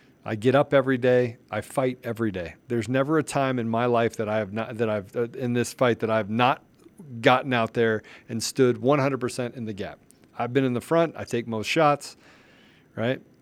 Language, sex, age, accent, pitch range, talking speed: English, male, 50-69, American, 125-155 Hz, 215 wpm